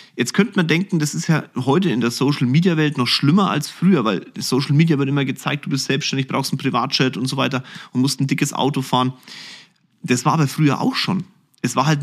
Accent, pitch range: German, 130-180 Hz